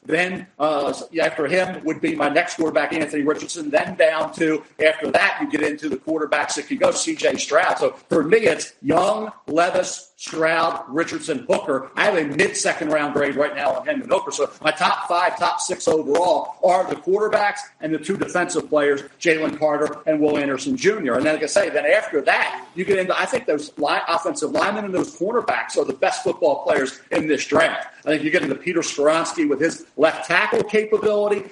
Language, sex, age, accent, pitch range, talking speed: English, male, 50-69, American, 155-205 Hz, 205 wpm